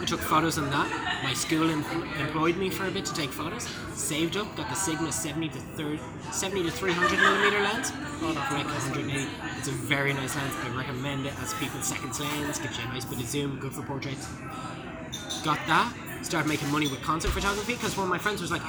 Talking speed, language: 220 wpm, English